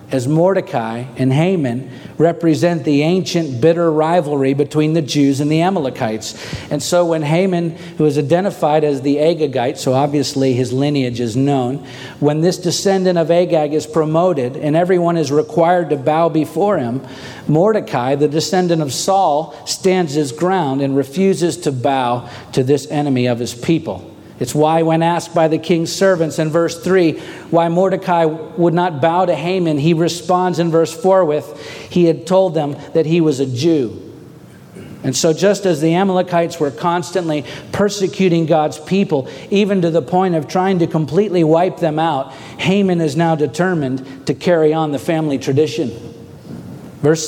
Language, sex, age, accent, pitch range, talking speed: English, male, 50-69, American, 145-175 Hz, 165 wpm